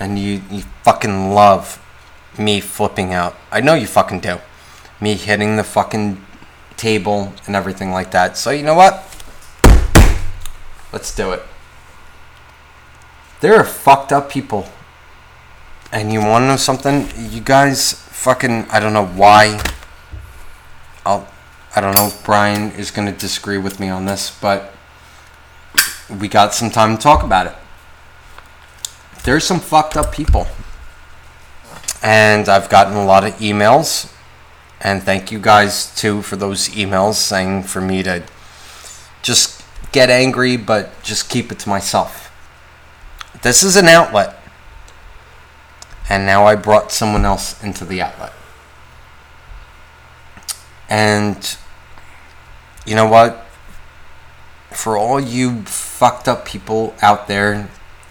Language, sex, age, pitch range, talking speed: English, male, 30-49, 75-105 Hz, 130 wpm